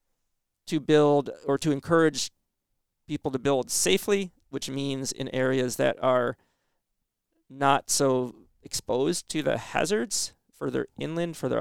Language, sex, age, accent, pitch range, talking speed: English, male, 40-59, American, 120-150 Hz, 125 wpm